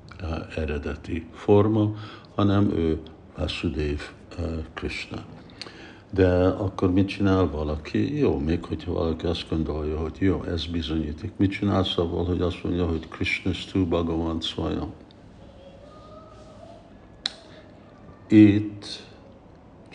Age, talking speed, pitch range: 60-79, 110 wpm, 80-100 Hz